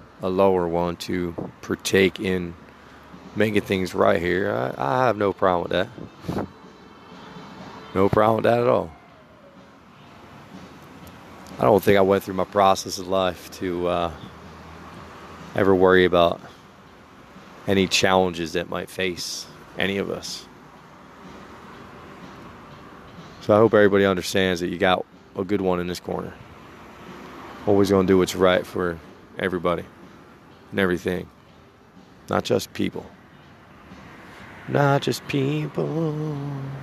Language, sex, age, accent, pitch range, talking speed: English, male, 20-39, American, 90-110 Hz, 120 wpm